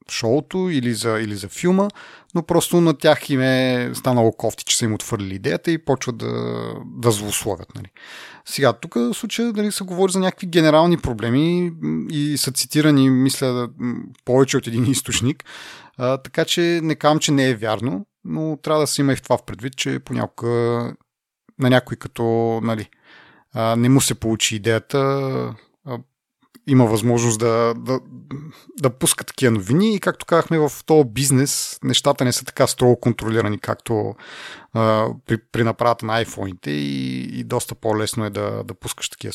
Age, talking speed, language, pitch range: 30-49, 170 wpm, Bulgarian, 110-150 Hz